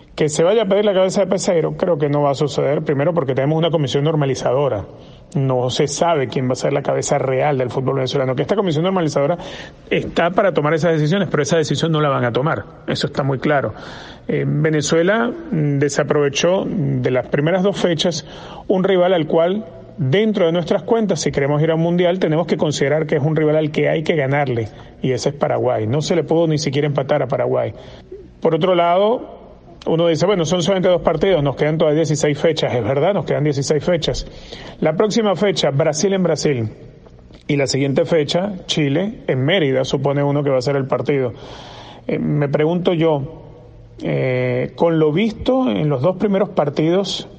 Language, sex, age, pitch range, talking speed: Spanish, male, 30-49, 140-180 Hz, 200 wpm